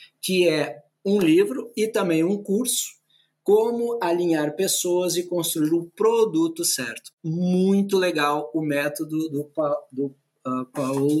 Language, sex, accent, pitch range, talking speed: Portuguese, male, Brazilian, 150-200 Hz, 125 wpm